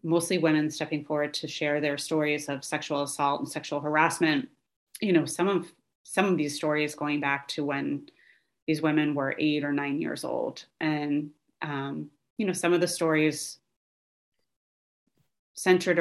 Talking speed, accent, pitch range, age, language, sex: 160 wpm, American, 150-170 Hz, 30-49, English, female